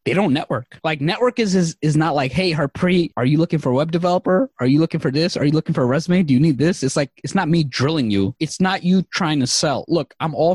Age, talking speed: 20-39, 285 wpm